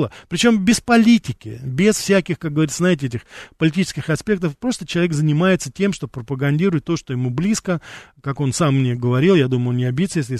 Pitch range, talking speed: 130-175 Hz, 185 wpm